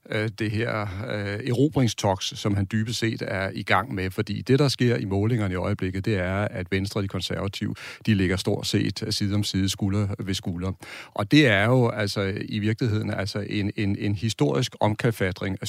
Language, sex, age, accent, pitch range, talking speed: Danish, male, 40-59, native, 95-115 Hz, 195 wpm